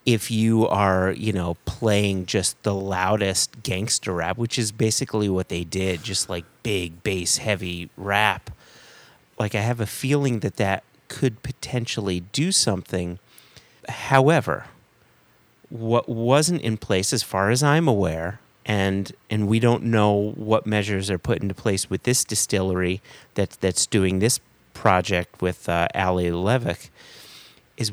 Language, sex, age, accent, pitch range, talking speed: English, male, 30-49, American, 95-120 Hz, 145 wpm